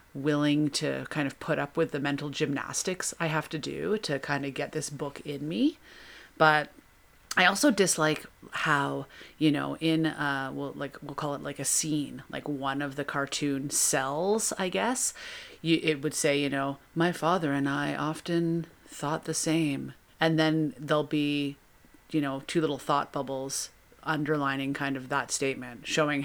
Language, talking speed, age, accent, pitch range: English, 175 wpm, 30-49, American, 140-160 Hz